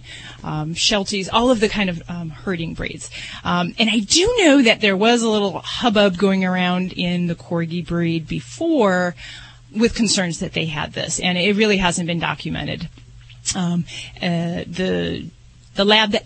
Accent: American